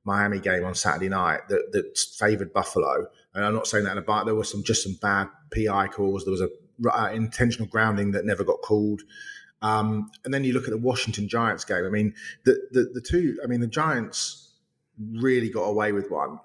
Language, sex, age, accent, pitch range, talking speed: English, male, 30-49, British, 100-125 Hz, 210 wpm